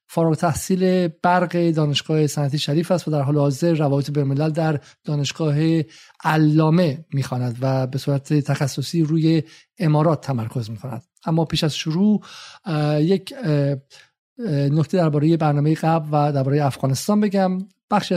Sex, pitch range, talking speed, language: male, 145-170 Hz, 130 wpm, Persian